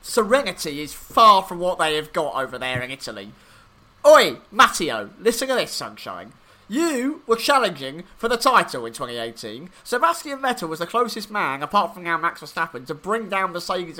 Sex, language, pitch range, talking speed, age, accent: male, English, 165-260 Hz, 175 wpm, 30-49, British